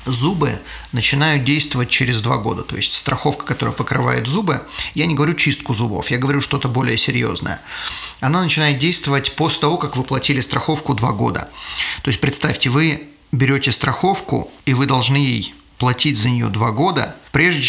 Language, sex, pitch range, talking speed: Russian, male, 120-145 Hz, 165 wpm